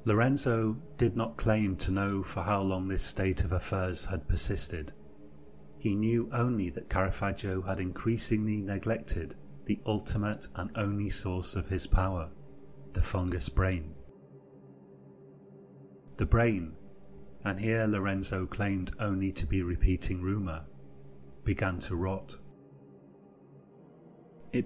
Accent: British